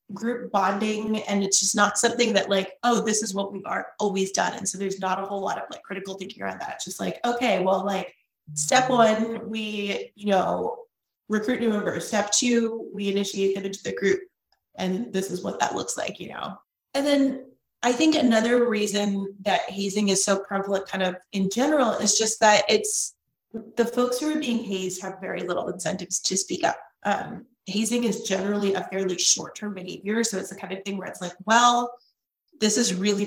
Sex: female